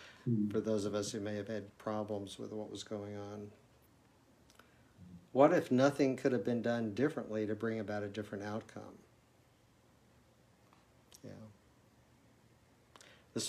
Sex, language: male, English